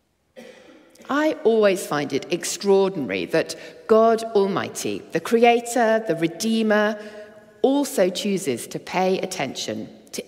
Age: 40-59